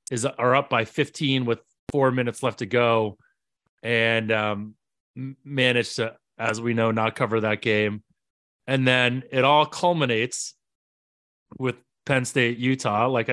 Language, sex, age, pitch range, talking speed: English, male, 30-49, 115-140 Hz, 140 wpm